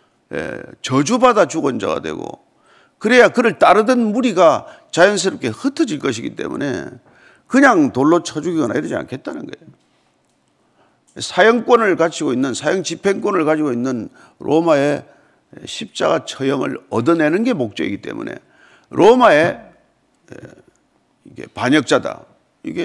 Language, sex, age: Korean, male, 50-69